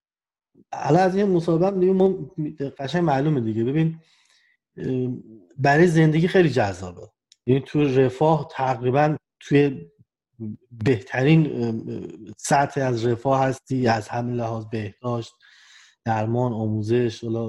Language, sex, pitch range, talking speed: Persian, male, 115-160 Hz, 105 wpm